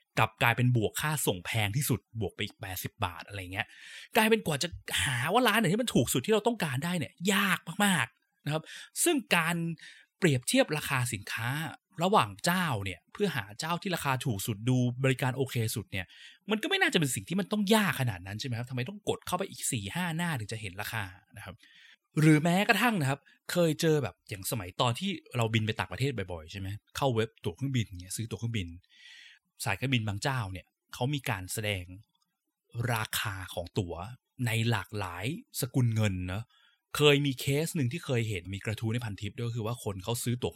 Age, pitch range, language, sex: 20-39, 105-150 Hz, Thai, male